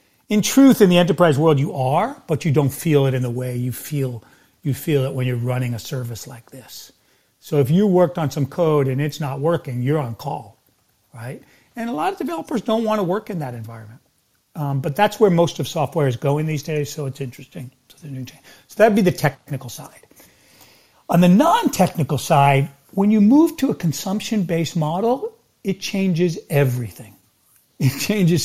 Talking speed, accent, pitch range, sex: 195 wpm, American, 135-175 Hz, male